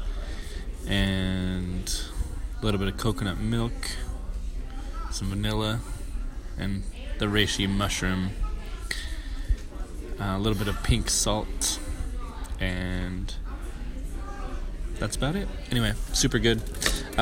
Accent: American